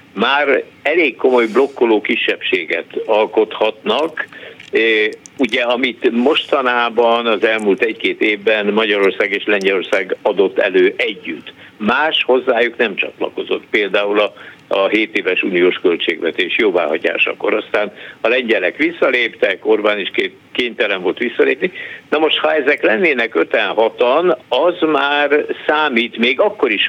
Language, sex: Hungarian, male